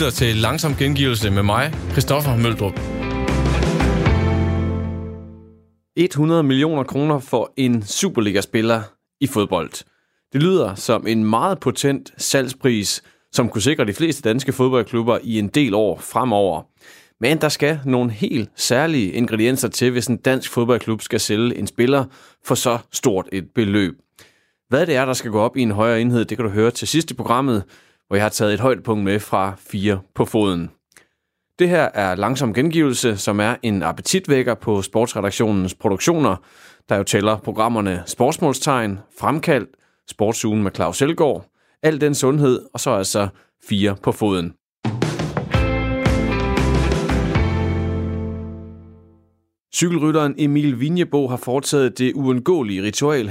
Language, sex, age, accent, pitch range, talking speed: Danish, male, 30-49, native, 100-130 Hz, 140 wpm